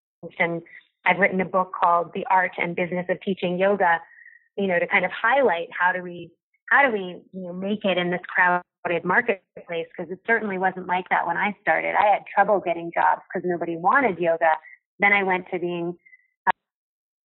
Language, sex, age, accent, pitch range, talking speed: English, female, 20-39, American, 175-205 Hz, 200 wpm